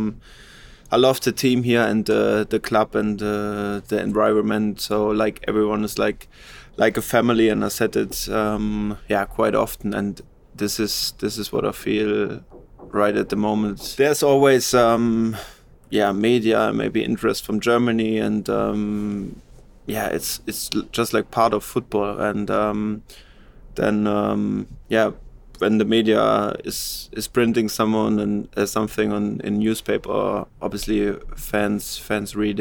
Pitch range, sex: 105-115 Hz, male